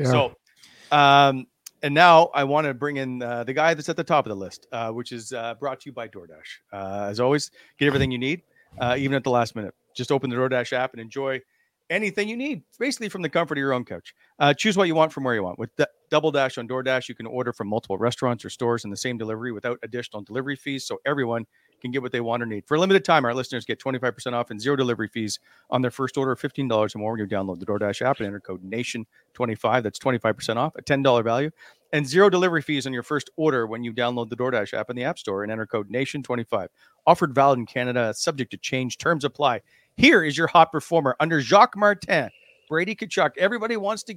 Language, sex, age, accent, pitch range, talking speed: English, male, 40-59, American, 120-160 Hz, 245 wpm